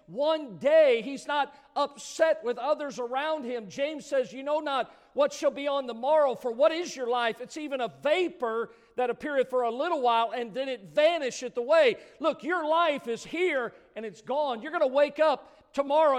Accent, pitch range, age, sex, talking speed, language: American, 215-290 Hz, 50-69, male, 200 wpm, English